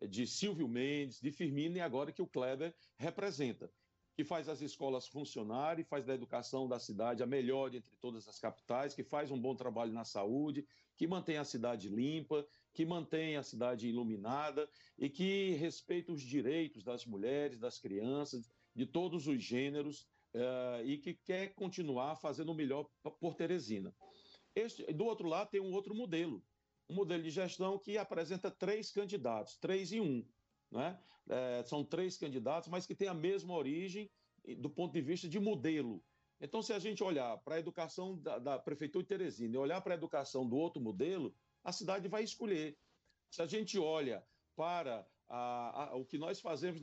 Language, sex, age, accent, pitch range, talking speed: Portuguese, male, 50-69, Brazilian, 130-180 Hz, 170 wpm